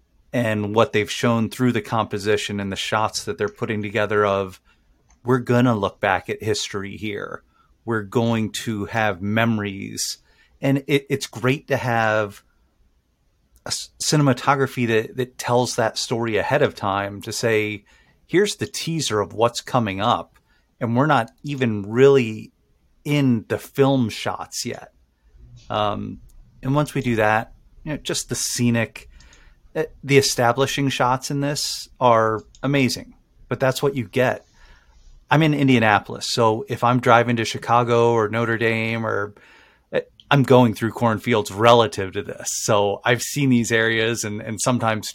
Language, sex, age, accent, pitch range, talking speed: English, male, 30-49, American, 105-125 Hz, 150 wpm